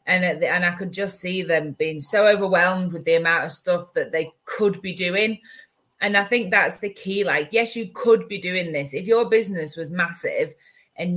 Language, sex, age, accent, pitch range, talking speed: English, female, 20-39, British, 165-200 Hz, 220 wpm